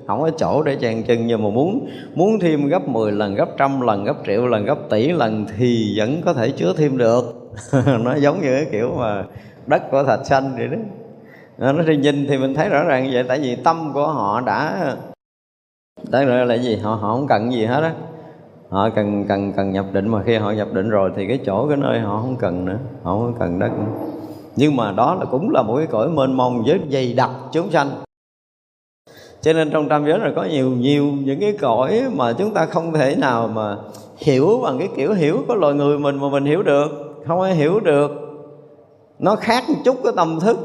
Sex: male